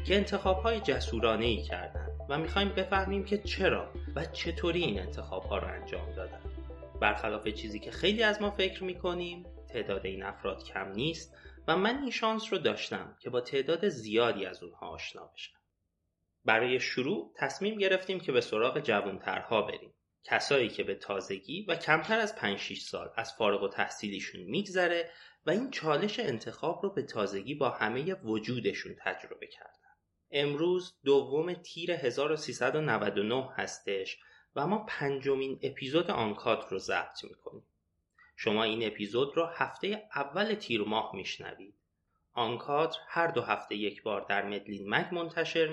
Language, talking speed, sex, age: Persian, 145 wpm, male, 30-49